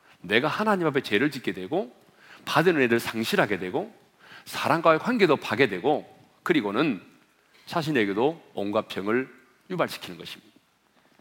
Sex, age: male, 40-59